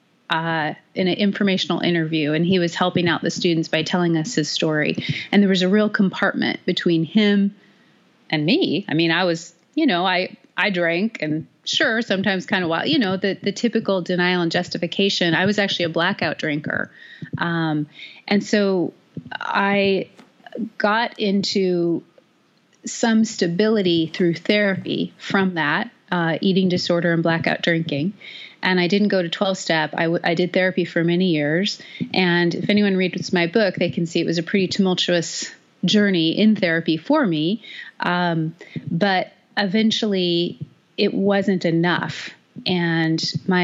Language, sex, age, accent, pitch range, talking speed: English, female, 30-49, American, 165-195 Hz, 155 wpm